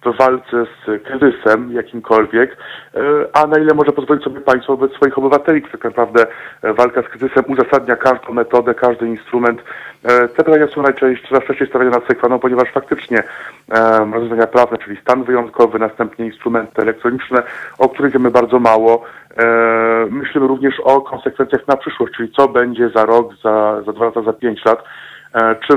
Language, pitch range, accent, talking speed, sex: Polish, 115-135 Hz, native, 160 wpm, male